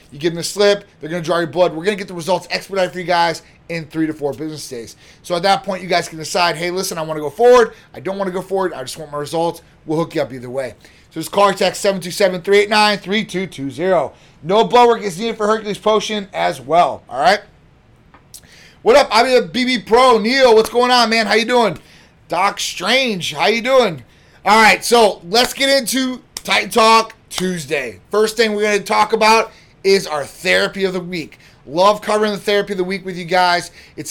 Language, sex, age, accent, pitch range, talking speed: English, male, 30-49, American, 165-215 Hz, 245 wpm